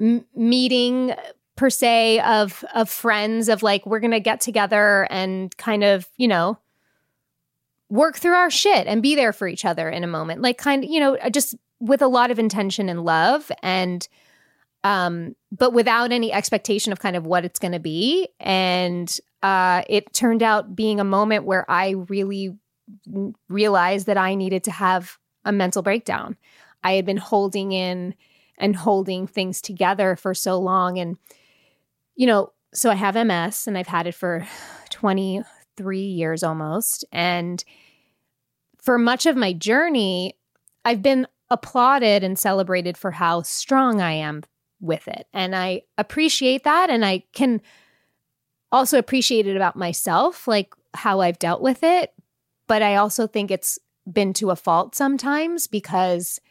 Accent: American